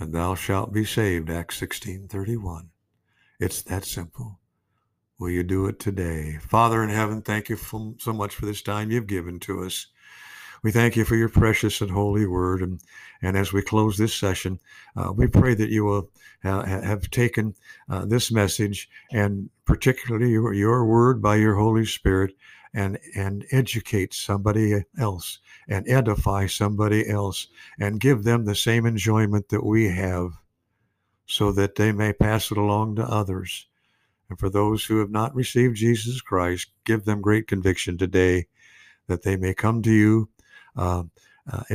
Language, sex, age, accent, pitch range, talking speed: English, male, 60-79, American, 95-110 Hz, 165 wpm